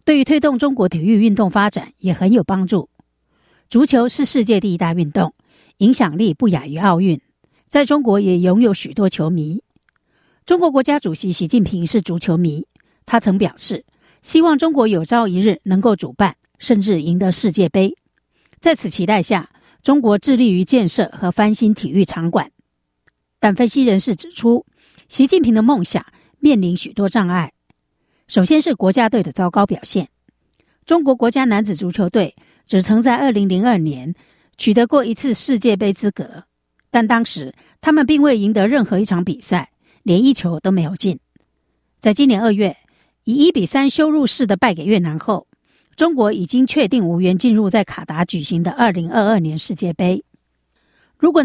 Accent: American